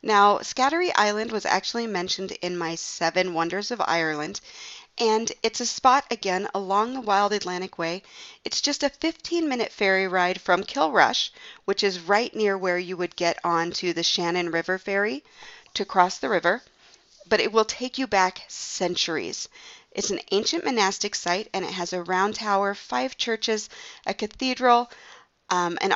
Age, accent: 40-59, American